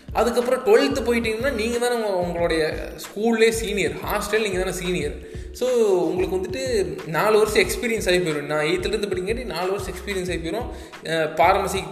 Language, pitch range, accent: Tamil, 160-210 Hz, native